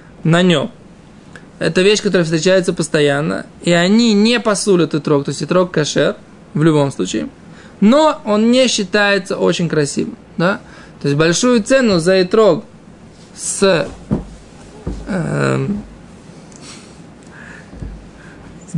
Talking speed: 120 wpm